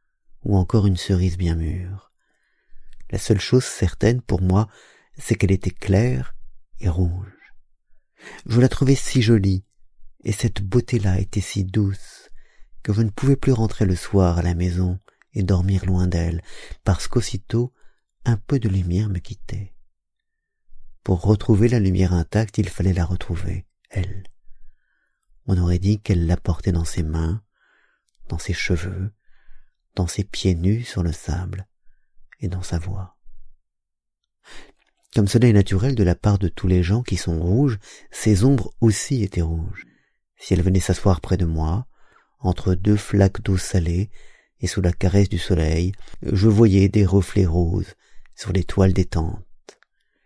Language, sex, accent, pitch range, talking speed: French, male, French, 90-105 Hz, 160 wpm